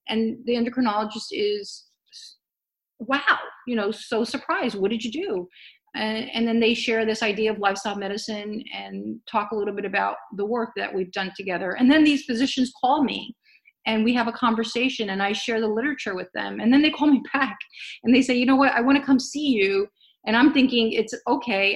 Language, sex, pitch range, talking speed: English, female, 210-265 Hz, 210 wpm